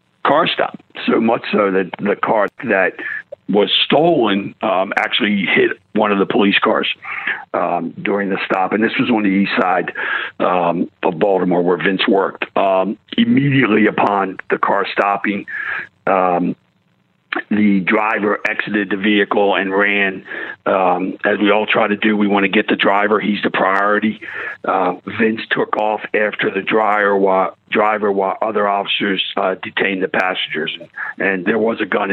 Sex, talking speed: male, 165 wpm